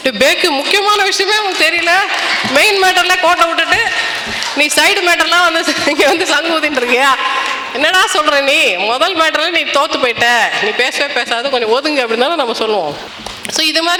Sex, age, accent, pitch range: female, 20-39, native, 230-305 Hz